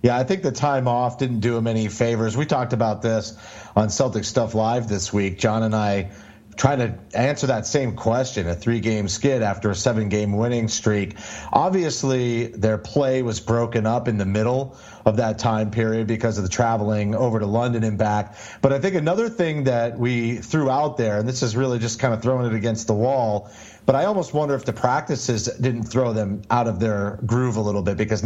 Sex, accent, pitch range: male, American, 110-130 Hz